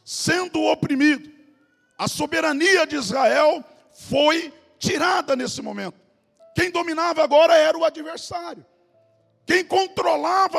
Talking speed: 100 wpm